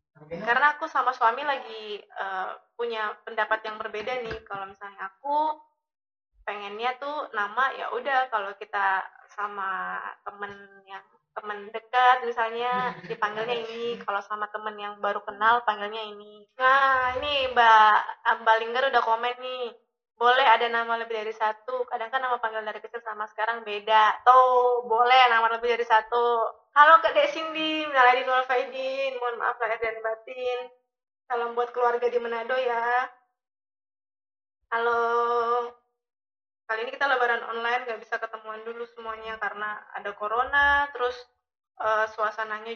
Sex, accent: female, native